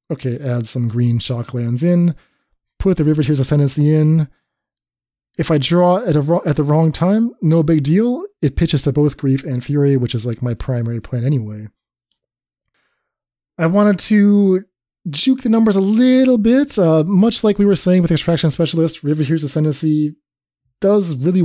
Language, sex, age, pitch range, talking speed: English, male, 20-39, 125-160 Hz, 175 wpm